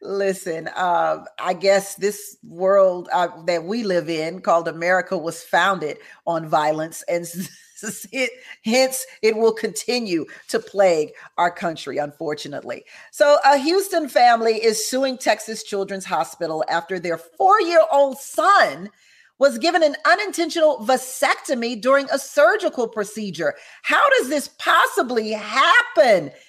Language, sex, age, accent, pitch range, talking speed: English, female, 40-59, American, 220-300 Hz, 125 wpm